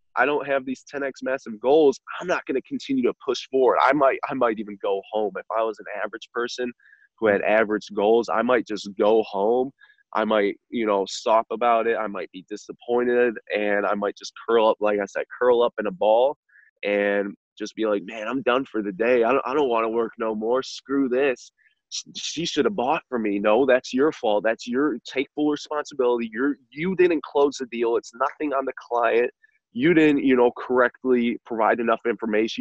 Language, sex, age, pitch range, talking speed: English, male, 20-39, 110-140 Hz, 215 wpm